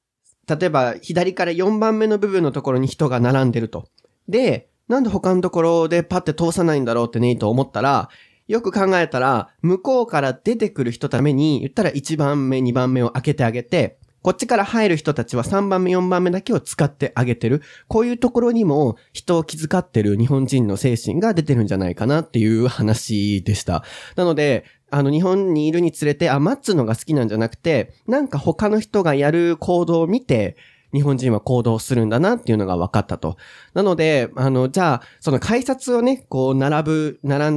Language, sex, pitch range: Japanese, male, 120-180 Hz